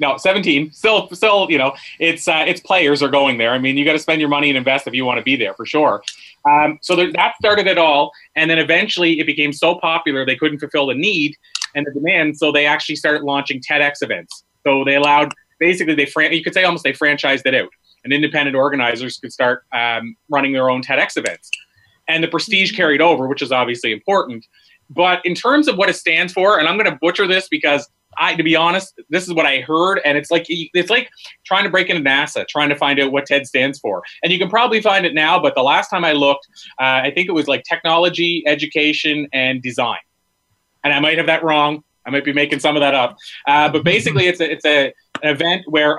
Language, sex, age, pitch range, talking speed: English, male, 30-49, 140-170 Hz, 235 wpm